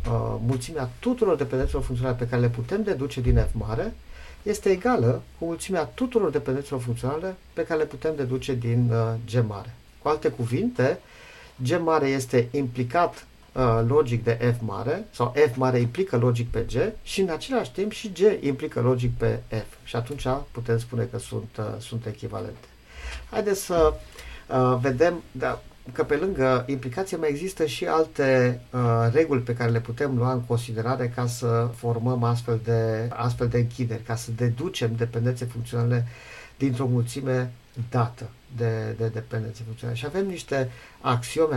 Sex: male